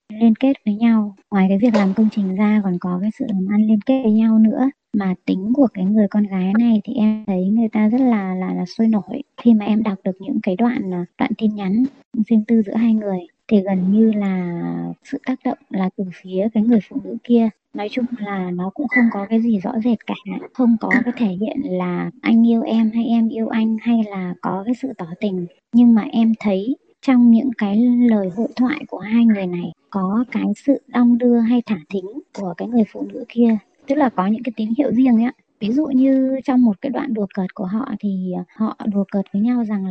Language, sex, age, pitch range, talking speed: Vietnamese, male, 20-39, 200-245 Hz, 240 wpm